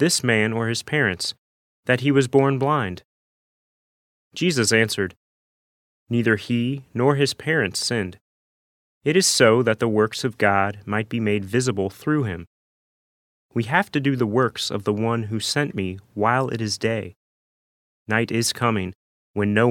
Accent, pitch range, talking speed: American, 95-125 Hz, 160 wpm